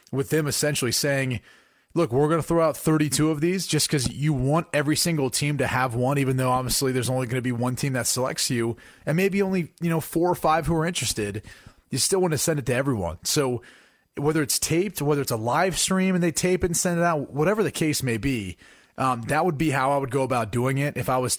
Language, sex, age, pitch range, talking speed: English, male, 30-49, 130-160 Hz, 255 wpm